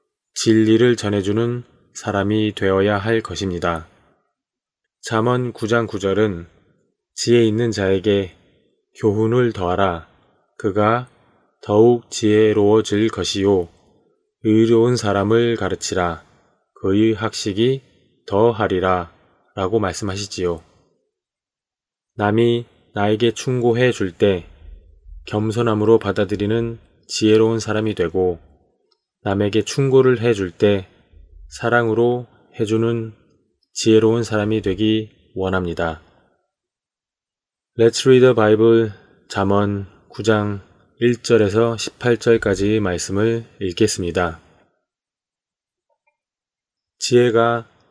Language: Korean